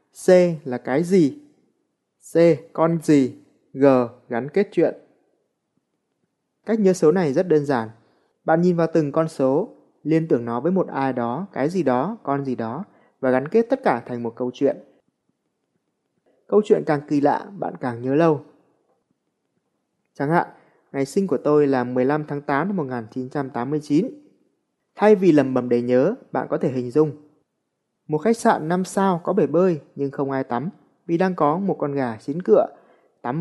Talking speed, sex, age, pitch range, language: 180 wpm, male, 20-39, 135-170 Hz, Vietnamese